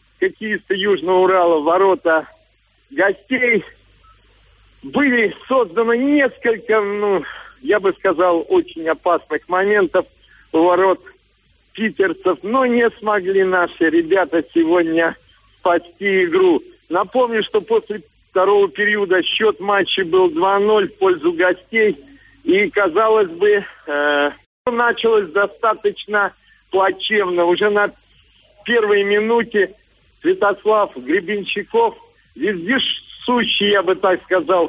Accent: native